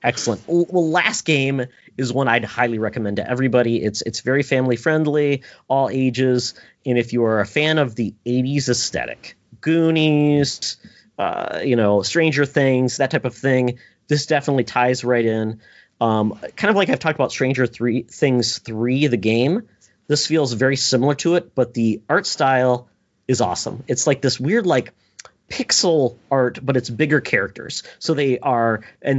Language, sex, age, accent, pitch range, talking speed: English, male, 30-49, American, 115-140 Hz, 170 wpm